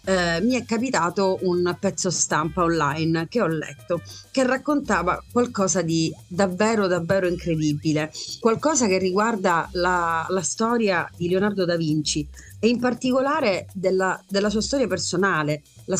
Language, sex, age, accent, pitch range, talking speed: Italian, female, 40-59, native, 170-220 Hz, 140 wpm